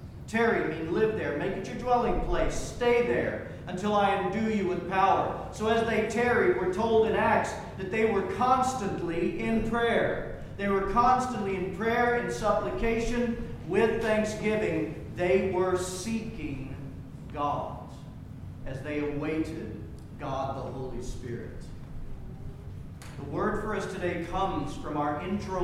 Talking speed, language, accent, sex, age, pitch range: 140 wpm, English, American, male, 40-59, 175-220 Hz